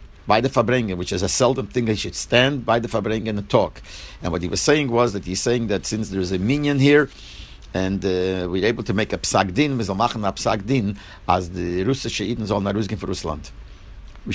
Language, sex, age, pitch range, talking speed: English, male, 60-79, 95-120 Hz, 220 wpm